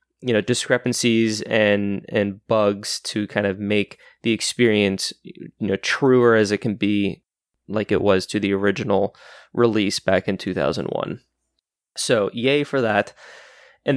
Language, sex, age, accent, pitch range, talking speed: English, male, 20-39, American, 105-120 Hz, 145 wpm